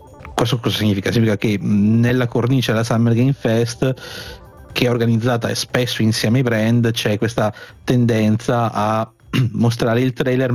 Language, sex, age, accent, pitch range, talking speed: Italian, male, 30-49, native, 110-125 Hz, 140 wpm